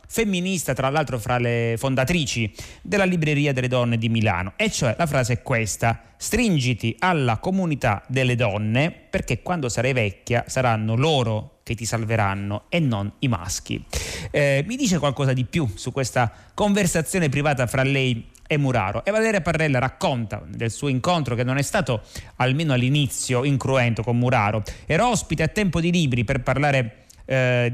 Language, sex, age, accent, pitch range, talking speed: Italian, male, 30-49, native, 120-155 Hz, 160 wpm